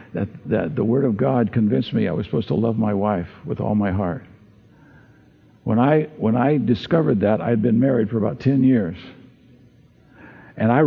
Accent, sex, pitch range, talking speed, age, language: American, male, 105-140 Hz, 180 wpm, 60-79, English